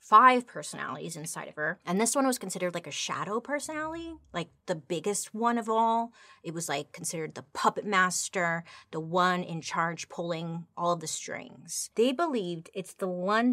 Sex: female